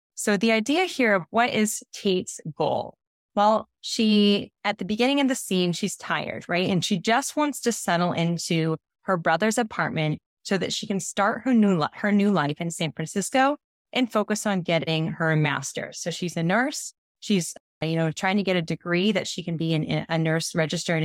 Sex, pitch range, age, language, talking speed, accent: female, 170-215 Hz, 20-39, English, 200 wpm, American